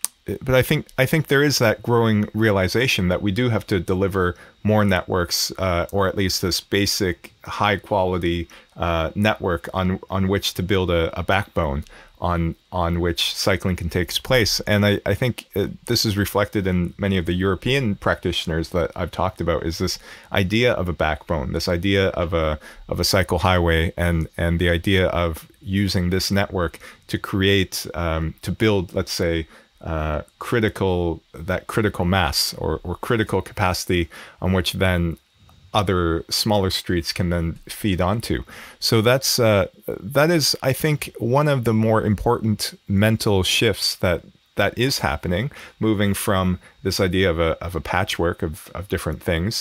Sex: male